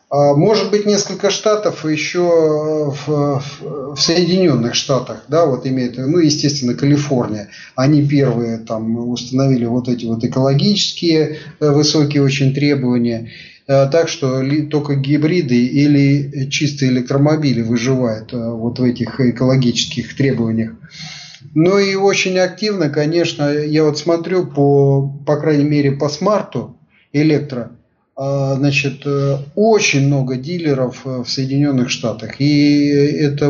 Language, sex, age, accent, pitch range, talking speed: Russian, male, 30-49, native, 130-155 Hz, 115 wpm